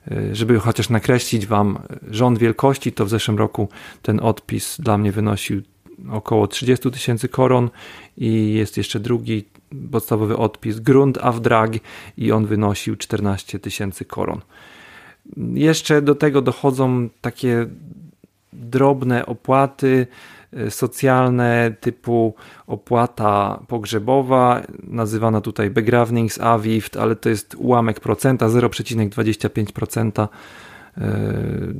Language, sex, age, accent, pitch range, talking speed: Polish, male, 40-59, native, 105-120 Hz, 100 wpm